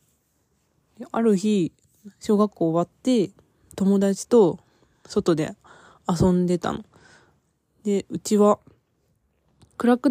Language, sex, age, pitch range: Japanese, female, 20-39, 170-235 Hz